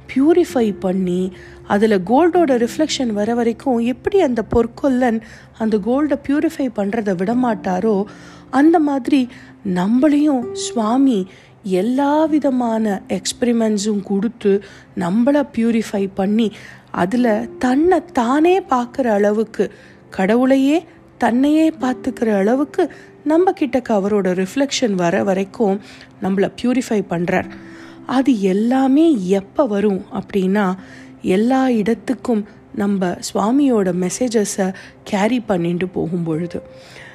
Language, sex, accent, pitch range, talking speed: Tamil, female, native, 200-275 Hz, 90 wpm